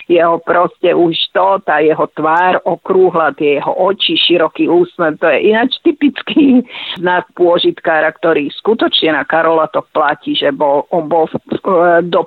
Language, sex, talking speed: Slovak, female, 145 wpm